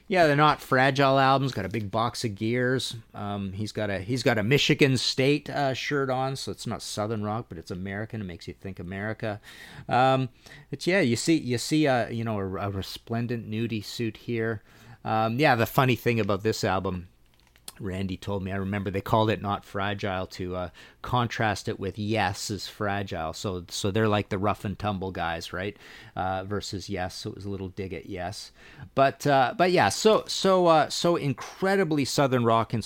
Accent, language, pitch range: American, English, 100-135 Hz